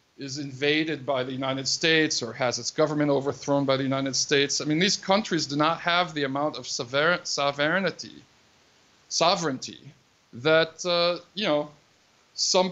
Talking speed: 155 wpm